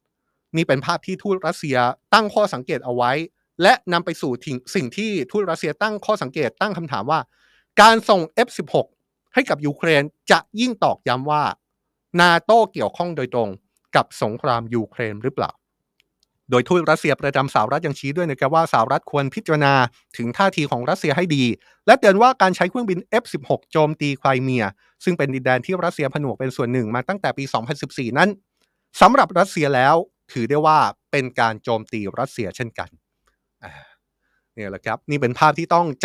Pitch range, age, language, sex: 130-180 Hz, 30-49, Thai, male